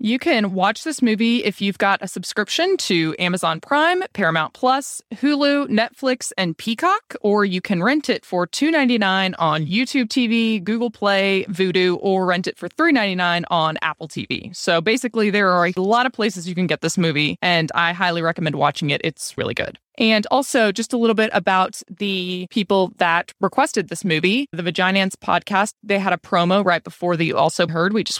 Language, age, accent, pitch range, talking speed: English, 20-39, American, 175-235 Hz, 190 wpm